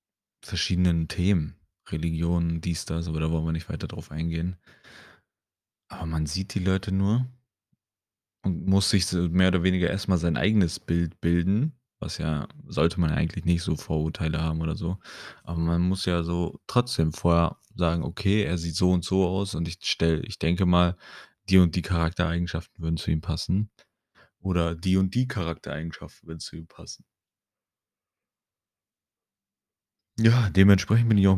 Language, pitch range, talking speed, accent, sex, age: German, 80-95 Hz, 160 wpm, German, male, 30-49